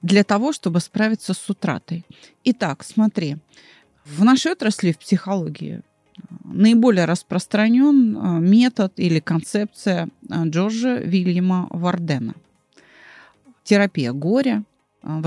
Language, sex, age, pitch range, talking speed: Russian, female, 30-49, 170-235 Hz, 95 wpm